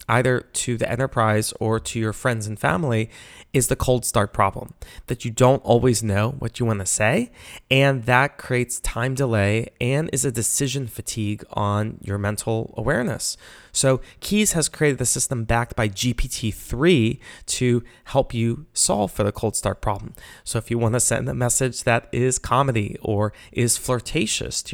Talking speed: 170 wpm